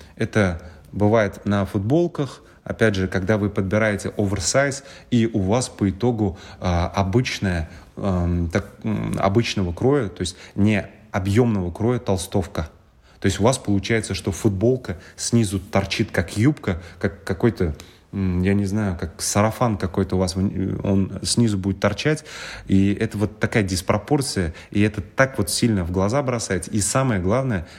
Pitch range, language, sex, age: 95-115 Hz, Russian, male, 30-49